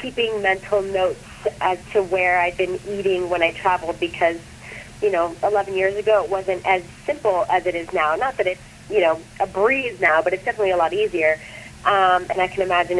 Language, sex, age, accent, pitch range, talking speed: English, female, 30-49, American, 180-215 Hz, 210 wpm